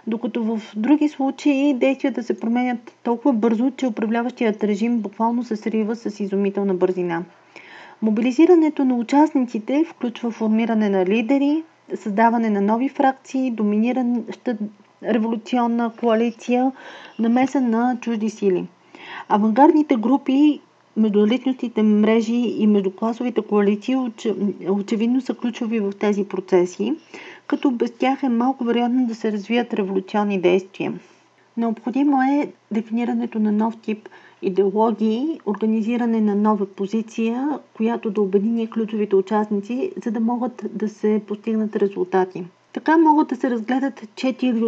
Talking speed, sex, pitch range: 120 wpm, female, 210-255 Hz